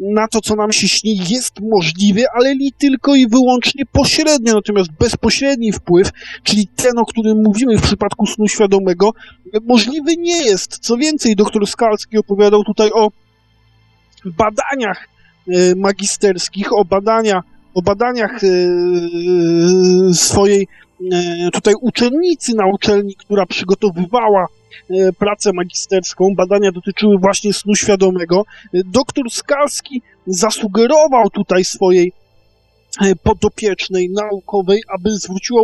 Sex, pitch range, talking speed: male, 185-230 Hz, 110 wpm